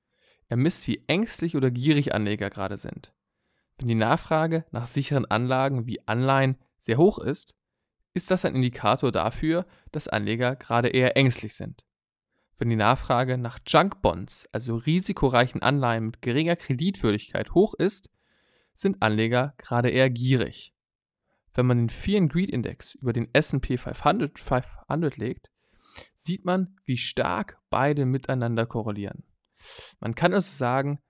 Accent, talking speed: German, 140 wpm